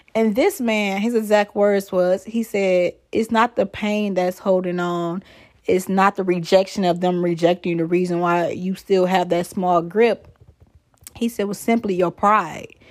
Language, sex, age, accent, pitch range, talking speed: English, female, 20-39, American, 180-230 Hz, 180 wpm